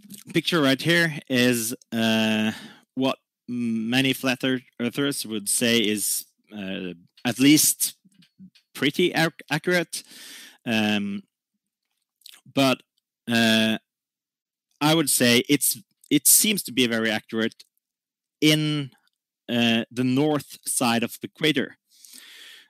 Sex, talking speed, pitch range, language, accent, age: male, 105 wpm, 110-155 Hz, English, Norwegian, 30-49